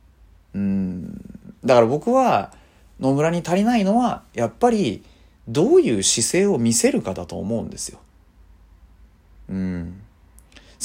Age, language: 40-59, Japanese